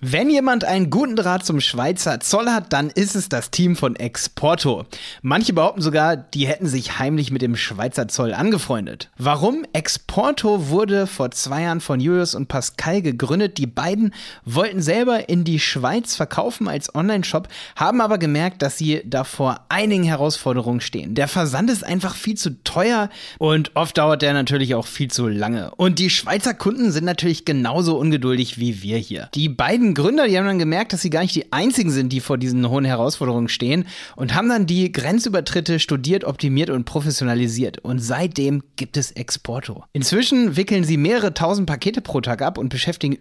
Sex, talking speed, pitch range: male, 180 wpm, 135-185 Hz